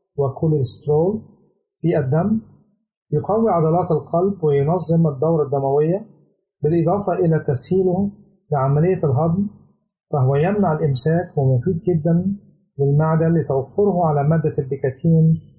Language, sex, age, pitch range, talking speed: Arabic, male, 50-69, 145-175 Hz, 90 wpm